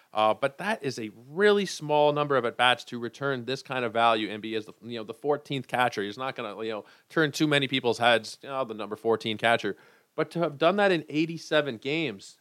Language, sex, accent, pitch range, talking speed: English, male, American, 115-150 Hz, 240 wpm